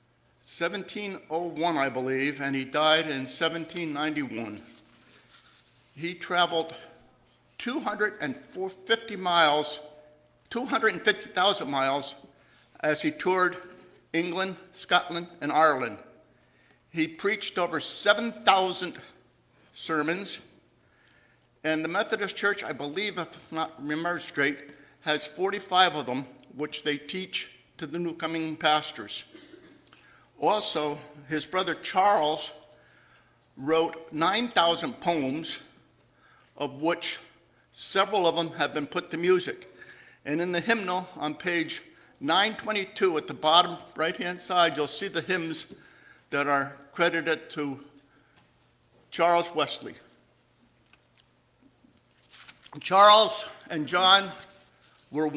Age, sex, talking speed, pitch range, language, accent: 60-79, male, 95 wpm, 150-185 Hz, English, American